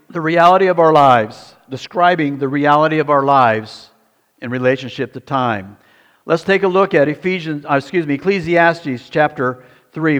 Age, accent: 60-79, American